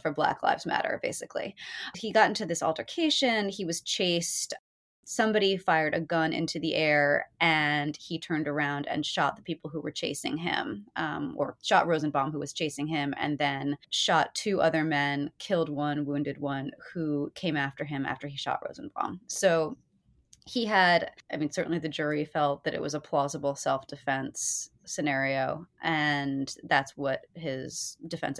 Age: 20-39